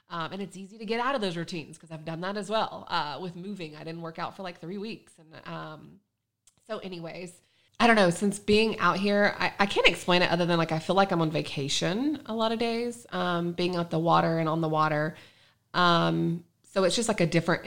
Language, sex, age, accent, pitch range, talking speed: English, female, 20-39, American, 160-195 Hz, 245 wpm